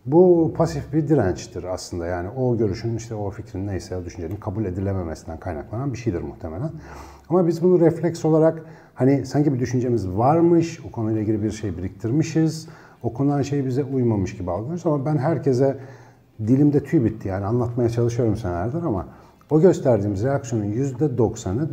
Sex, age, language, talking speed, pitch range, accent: male, 50-69, Turkish, 155 wpm, 110-145 Hz, native